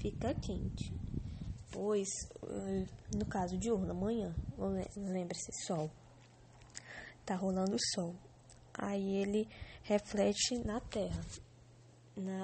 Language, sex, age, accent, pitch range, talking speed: English, female, 10-29, Brazilian, 125-210 Hz, 100 wpm